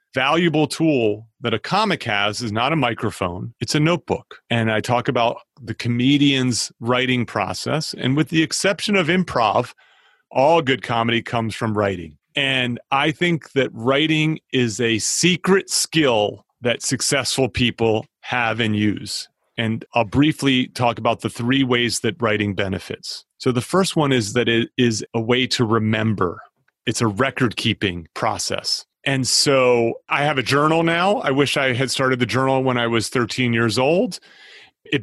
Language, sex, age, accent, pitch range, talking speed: English, male, 30-49, American, 115-140 Hz, 165 wpm